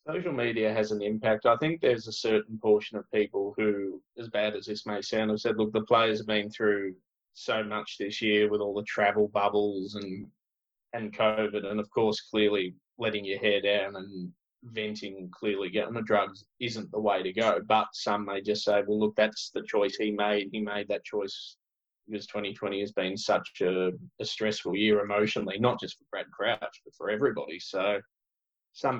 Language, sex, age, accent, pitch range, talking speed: English, male, 20-39, Australian, 100-110 Hz, 200 wpm